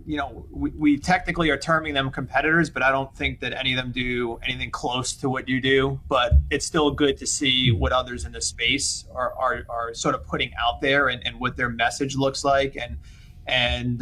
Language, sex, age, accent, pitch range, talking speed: English, male, 30-49, American, 115-135 Hz, 220 wpm